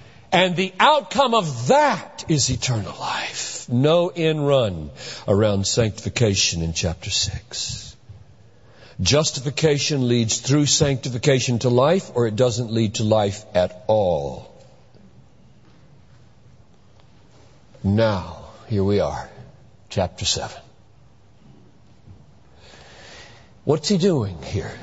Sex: male